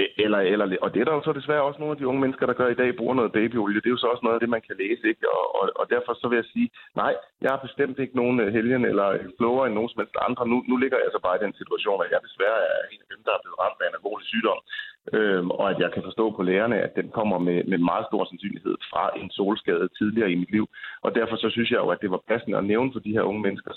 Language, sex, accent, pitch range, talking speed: Danish, male, native, 100-130 Hz, 305 wpm